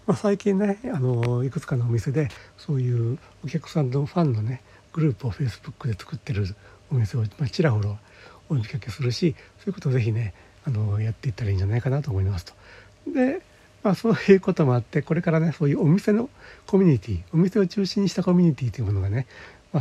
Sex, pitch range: male, 110-150 Hz